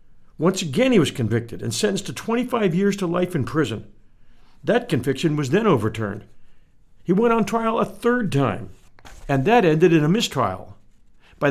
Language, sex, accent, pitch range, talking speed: English, male, American, 135-195 Hz, 170 wpm